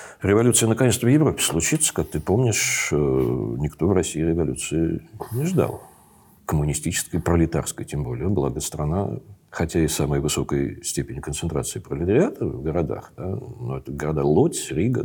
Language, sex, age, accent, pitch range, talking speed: Russian, male, 50-69, native, 75-105 Hz, 140 wpm